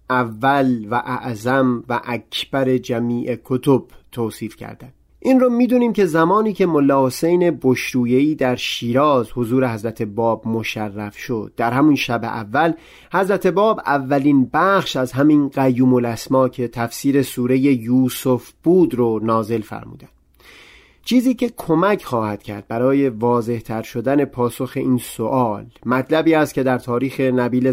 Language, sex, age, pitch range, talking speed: Persian, male, 40-59, 120-155 Hz, 135 wpm